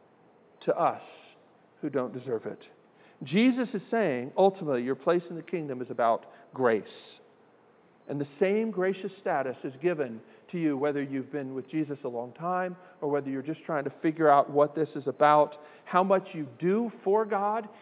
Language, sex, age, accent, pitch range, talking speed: English, male, 50-69, American, 150-210 Hz, 180 wpm